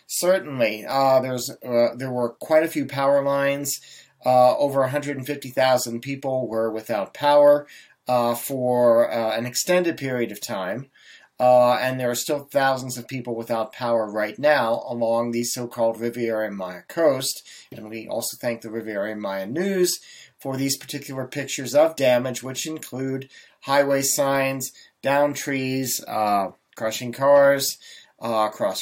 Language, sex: English, male